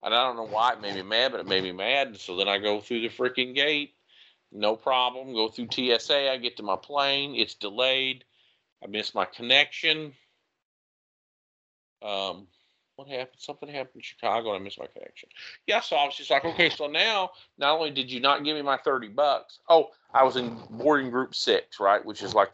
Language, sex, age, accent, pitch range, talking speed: English, male, 40-59, American, 115-150 Hz, 215 wpm